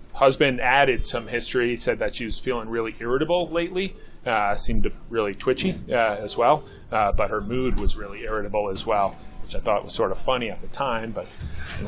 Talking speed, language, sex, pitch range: 200 wpm, English, male, 110-130 Hz